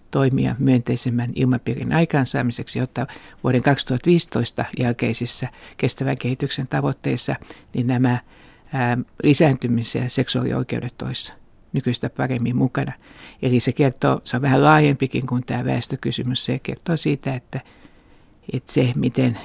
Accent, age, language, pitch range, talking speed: native, 50-69, Finnish, 125-135 Hz, 115 wpm